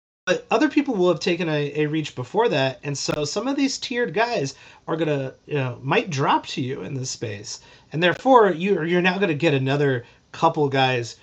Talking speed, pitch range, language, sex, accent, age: 210 wpm, 130-165 Hz, English, male, American, 30-49